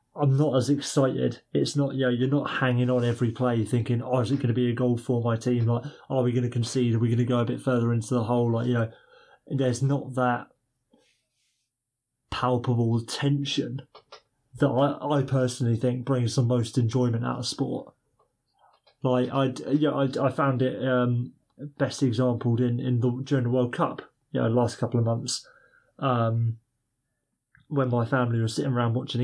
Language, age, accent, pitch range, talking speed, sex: English, 20-39, British, 120-130 Hz, 195 wpm, male